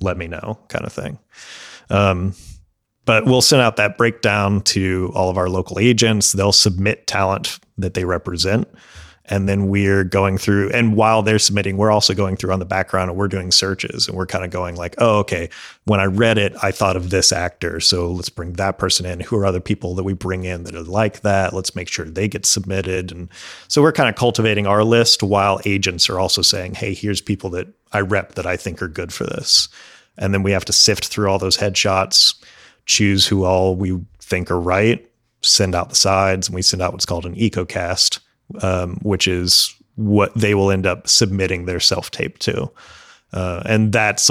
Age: 30-49